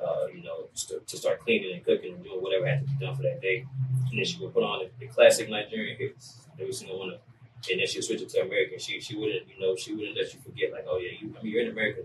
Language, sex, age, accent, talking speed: English, male, 20-39, American, 310 wpm